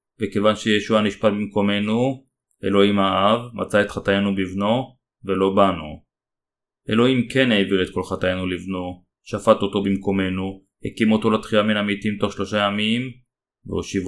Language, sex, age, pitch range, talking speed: Hebrew, male, 30-49, 95-110 Hz, 130 wpm